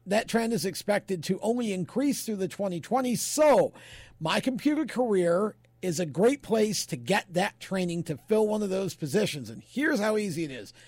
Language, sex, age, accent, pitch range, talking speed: English, male, 50-69, American, 175-230 Hz, 190 wpm